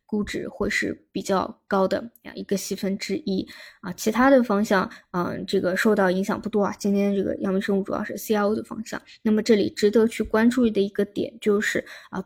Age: 20-39